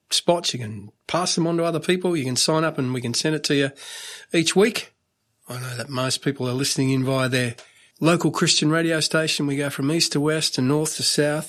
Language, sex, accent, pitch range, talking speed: English, male, Australian, 130-155 Hz, 240 wpm